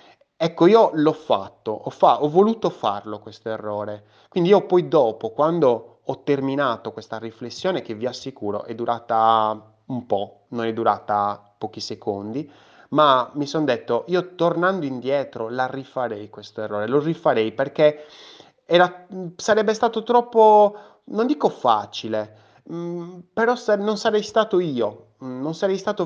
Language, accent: Italian, native